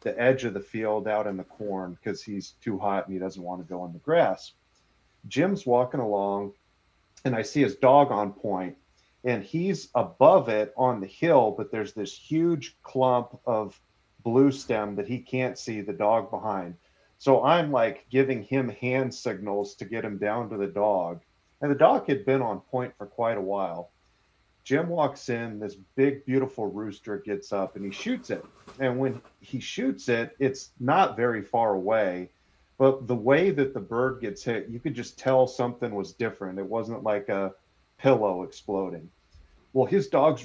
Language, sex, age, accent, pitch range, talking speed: English, male, 40-59, American, 100-130 Hz, 185 wpm